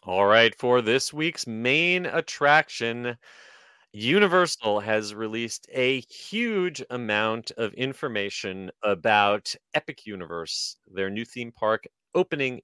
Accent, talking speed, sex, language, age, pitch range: American, 110 wpm, male, English, 30-49, 95-125 Hz